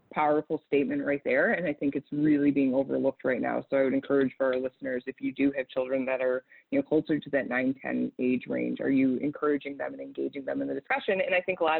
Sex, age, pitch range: female, 20-39, 140-155 Hz